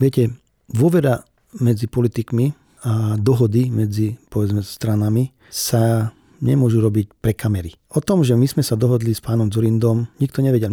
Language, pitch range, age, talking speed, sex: Slovak, 115-135 Hz, 40-59, 145 wpm, male